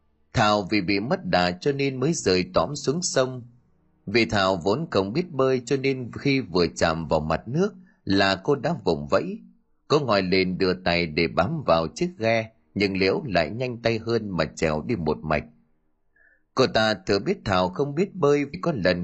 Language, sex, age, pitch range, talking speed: Vietnamese, male, 30-49, 85-135 Hz, 200 wpm